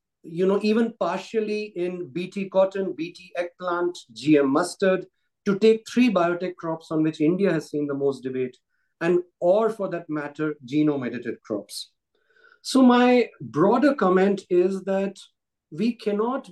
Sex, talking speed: male, 145 wpm